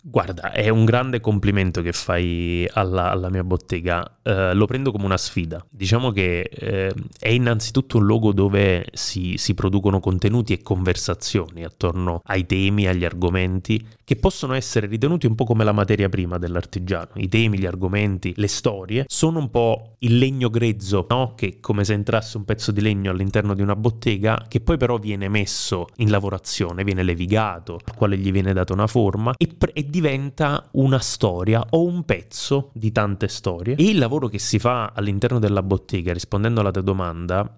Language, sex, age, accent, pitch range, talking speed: Italian, male, 20-39, native, 95-115 Hz, 180 wpm